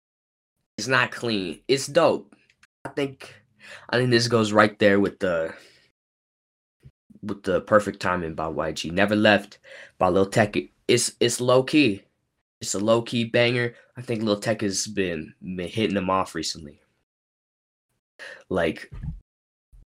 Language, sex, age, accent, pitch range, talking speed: English, male, 10-29, American, 90-110 Hz, 145 wpm